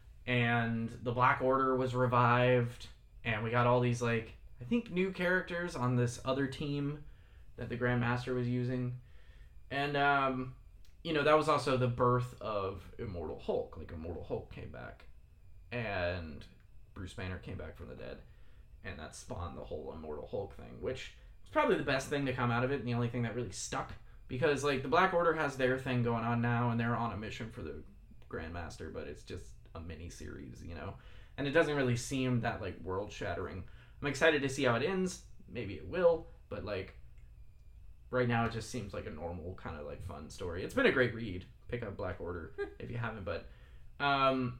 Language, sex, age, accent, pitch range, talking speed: English, male, 20-39, American, 110-135 Hz, 200 wpm